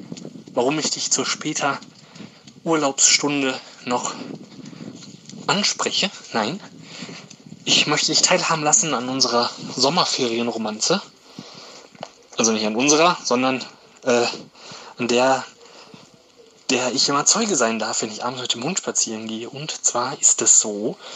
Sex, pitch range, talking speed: male, 130-180 Hz, 120 wpm